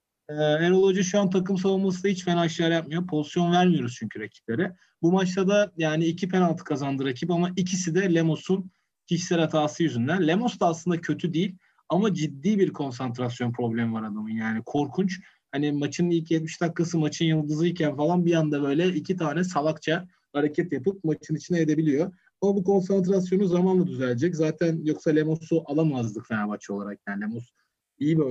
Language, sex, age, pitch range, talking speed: Turkish, male, 40-59, 150-190 Hz, 165 wpm